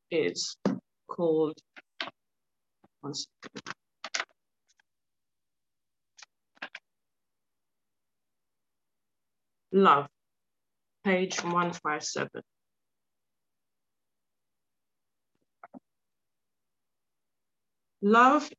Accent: British